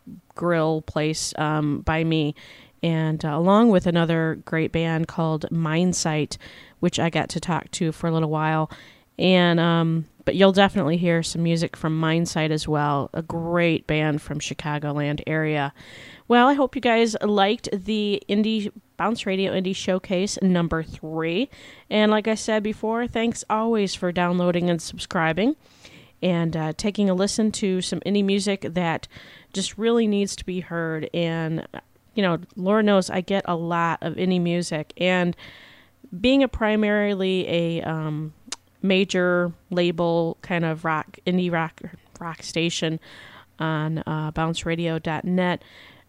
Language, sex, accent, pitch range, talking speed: English, female, American, 160-195 Hz, 145 wpm